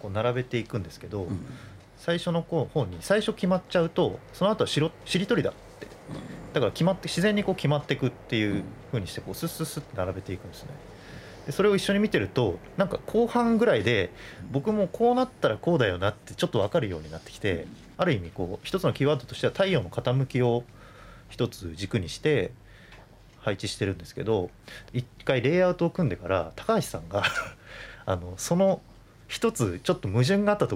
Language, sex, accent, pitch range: Japanese, male, native, 100-170 Hz